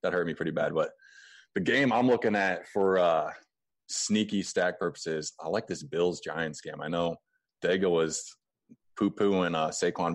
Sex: male